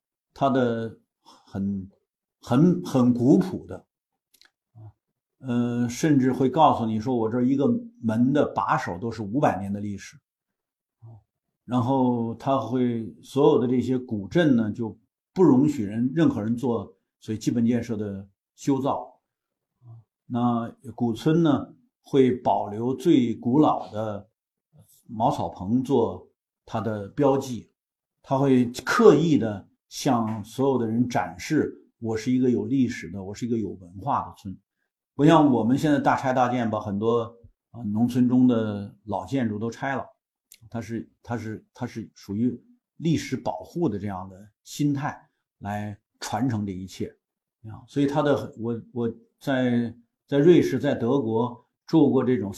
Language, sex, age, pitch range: Chinese, male, 50-69, 110-135 Hz